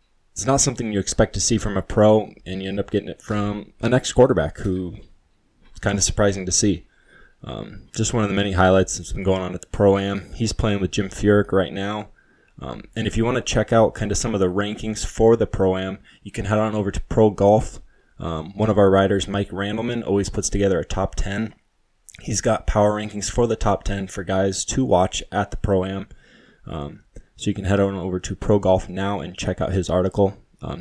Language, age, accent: English, 20-39, American